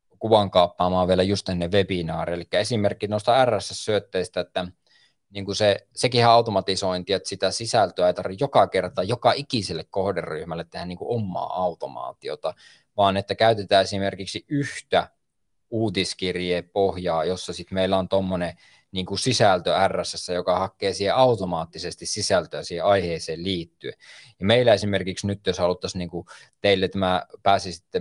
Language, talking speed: Finnish, 135 wpm